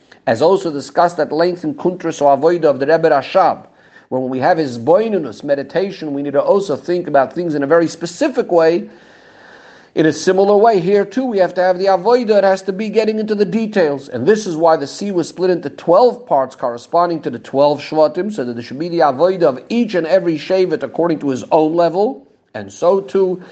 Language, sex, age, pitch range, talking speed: English, male, 50-69, 145-190 Hz, 225 wpm